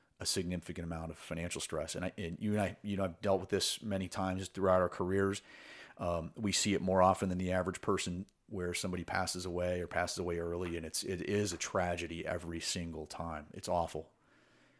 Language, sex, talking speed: English, male, 210 wpm